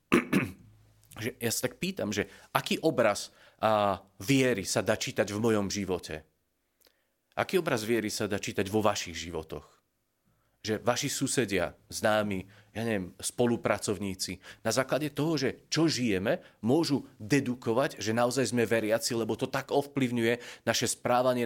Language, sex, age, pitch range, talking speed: Slovak, male, 30-49, 110-140 Hz, 135 wpm